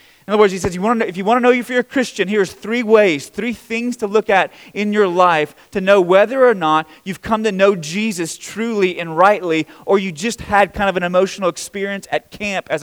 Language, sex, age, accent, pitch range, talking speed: English, male, 30-49, American, 170-210 Hz, 235 wpm